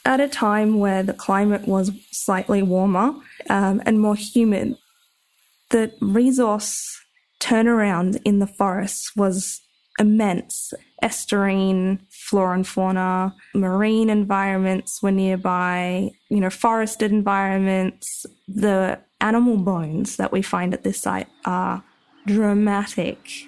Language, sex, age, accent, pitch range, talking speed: English, female, 20-39, Australian, 190-225 Hz, 110 wpm